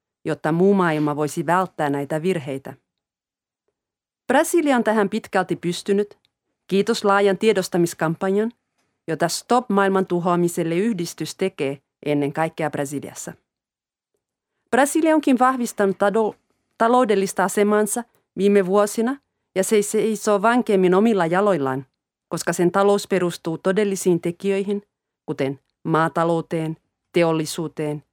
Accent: native